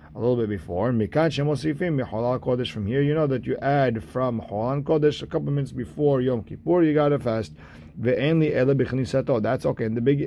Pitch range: 110-140 Hz